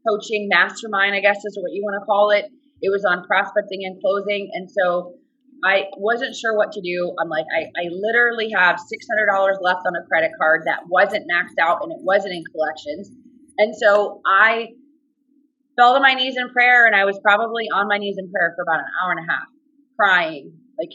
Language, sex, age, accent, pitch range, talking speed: English, female, 30-49, American, 180-270 Hz, 210 wpm